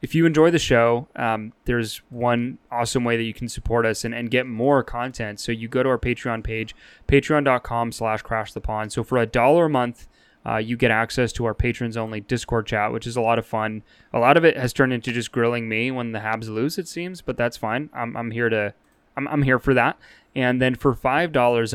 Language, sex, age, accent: English, male, 20-39, American